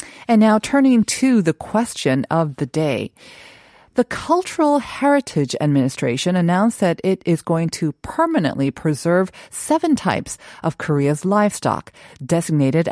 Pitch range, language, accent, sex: 150-220 Hz, Korean, American, female